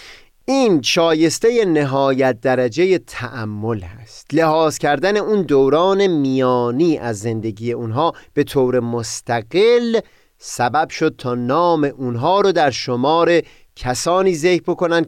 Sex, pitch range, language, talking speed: male, 120-170 Hz, Persian, 110 wpm